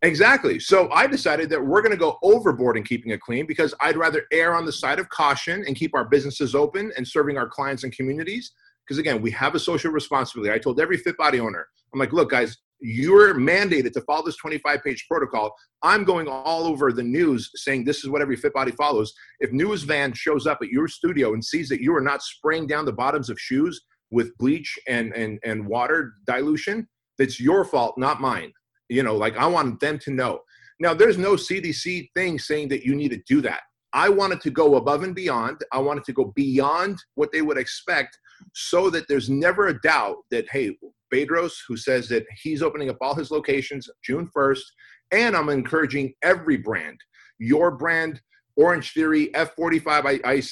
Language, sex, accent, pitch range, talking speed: English, male, American, 135-175 Hz, 205 wpm